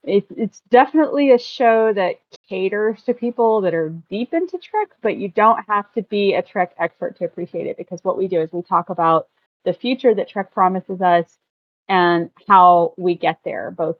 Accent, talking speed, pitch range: American, 195 wpm, 165-200 Hz